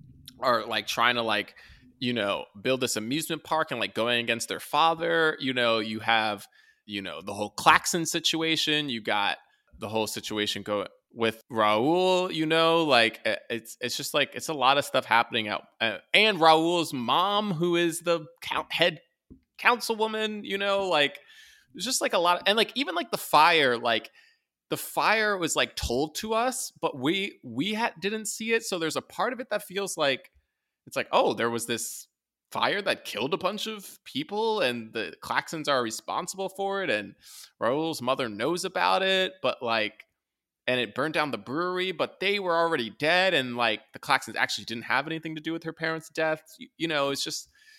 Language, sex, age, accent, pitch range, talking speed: English, male, 20-39, American, 120-200 Hz, 195 wpm